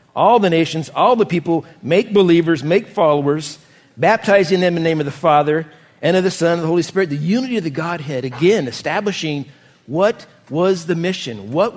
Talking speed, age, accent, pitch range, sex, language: 195 wpm, 50-69, American, 160-210 Hz, male, English